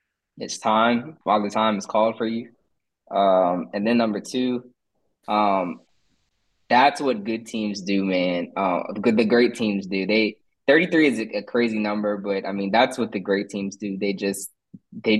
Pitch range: 95-110 Hz